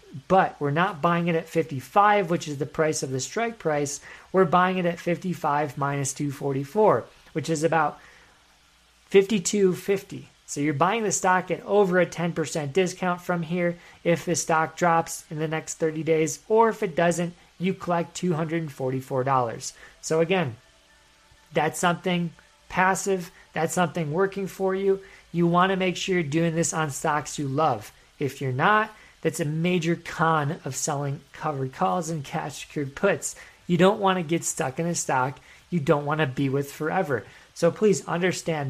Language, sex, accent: English, male, American